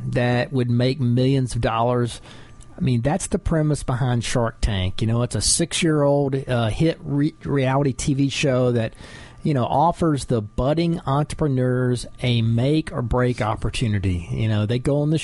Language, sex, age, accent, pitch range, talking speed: English, male, 40-59, American, 115-150 Hz, 155 wpm